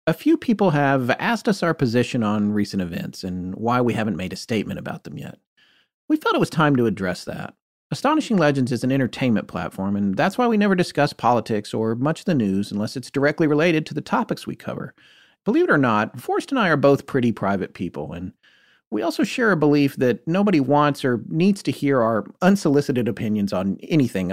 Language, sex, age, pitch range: English, male, 40-59, 115-195 Hz